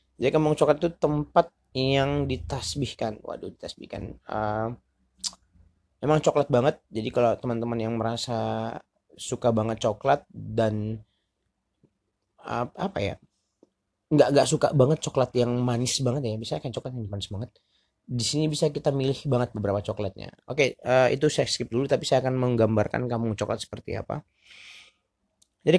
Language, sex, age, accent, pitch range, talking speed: Indonesian, male, 30-49, native, 110-135 Hz, 145 wpm